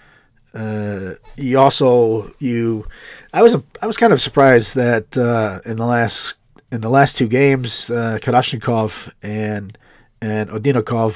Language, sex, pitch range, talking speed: English, male, 110-135 Hz, 140 wpm